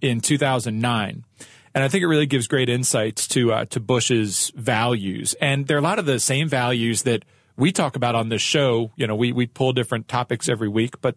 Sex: male